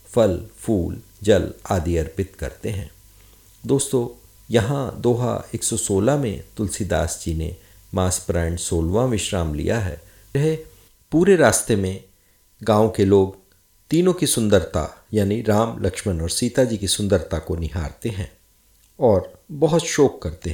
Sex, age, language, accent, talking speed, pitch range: male, 50-69, Hindi, native, 130 wpm, 90-130 Hz